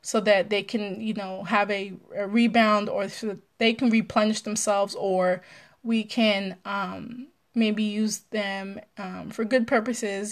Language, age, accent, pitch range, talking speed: English, 20-39, American, 195-220 Hz, 165 wpm